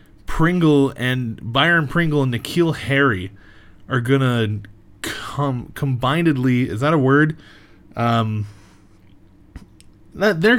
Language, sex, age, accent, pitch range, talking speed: English, male, 20-39, American, 105-140 Hz, 100 wpm